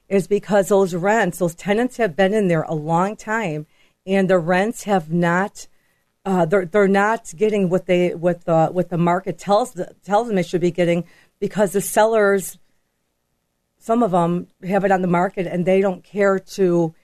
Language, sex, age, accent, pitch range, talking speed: English, female, 40-59, American, 170-205 Hz, 195 wpm